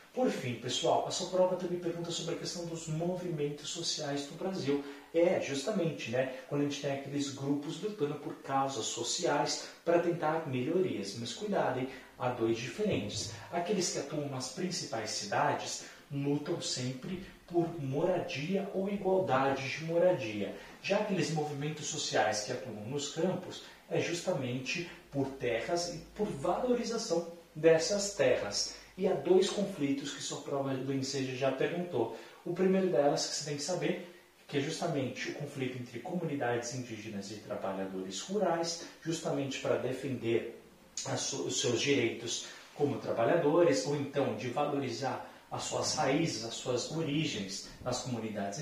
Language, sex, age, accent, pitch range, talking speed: Portuguese, male, 40-59, Brazilian, 130-175 Hz, 145 wpm